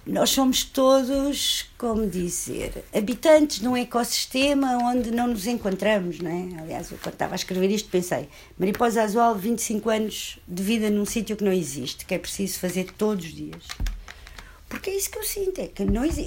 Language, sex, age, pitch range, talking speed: Portuguese, female, 50-69, 160-250 Hz, 185 wpm